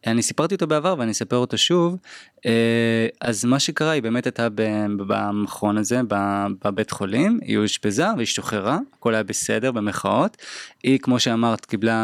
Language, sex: Hebrew, male